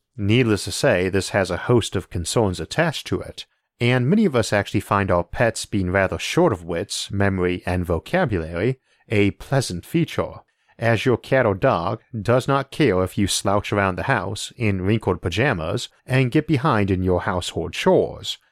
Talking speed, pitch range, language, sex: 180 wpm, 90-125 Hz, English, male